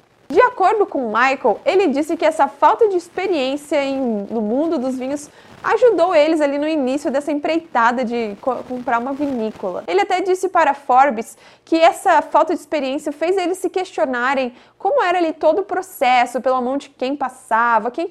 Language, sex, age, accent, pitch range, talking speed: Portuguese, female, 20-39, Brazilian, 245-320 Hz, 170 wpm